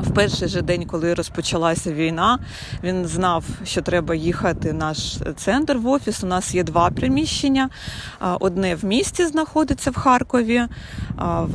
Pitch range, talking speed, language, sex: 170-210 Hz, 150 wpm, Ukrainian, female